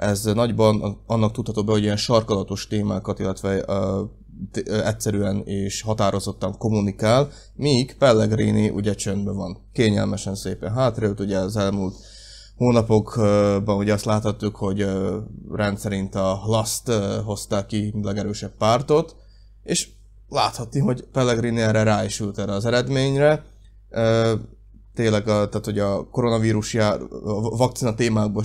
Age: 20-39